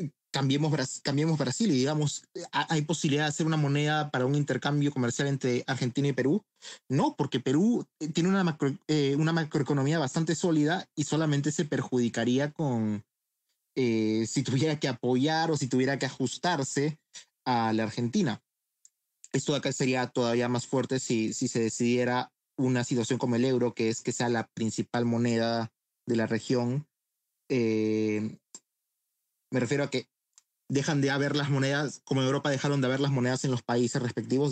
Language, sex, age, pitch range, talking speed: Spanish, male, 30-49, 120-145 Hz, 165 wpm